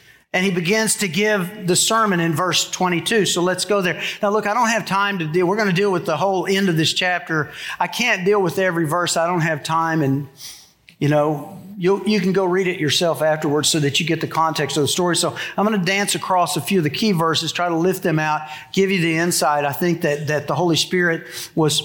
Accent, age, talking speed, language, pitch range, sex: American, 50-69, 255 wpm, English, 160-205 Hz, male